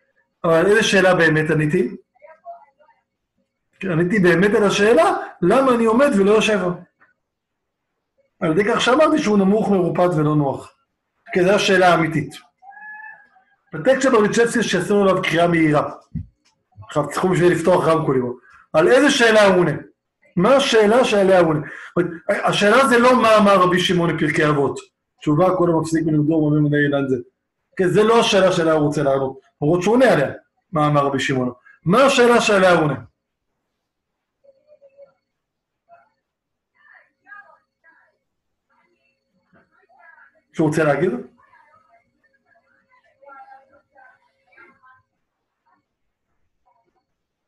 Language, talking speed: Hebrew, 100 wpm